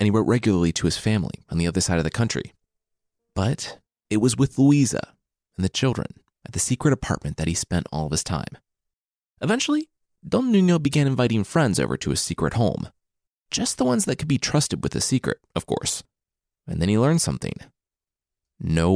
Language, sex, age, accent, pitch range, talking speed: English, male, 30-49, American, 85-140 Hz, 195 wpm